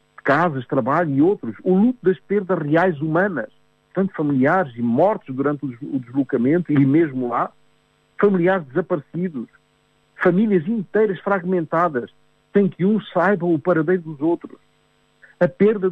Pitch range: 145-185 Hz